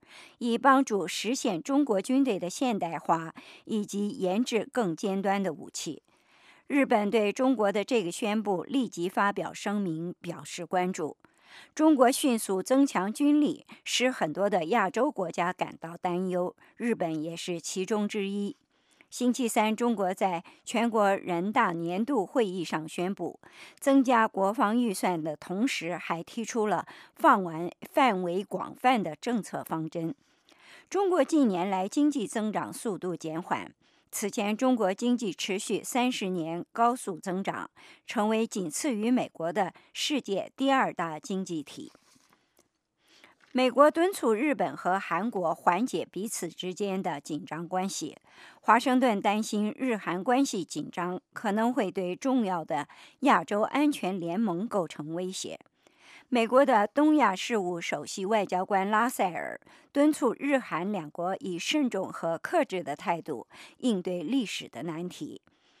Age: 50-69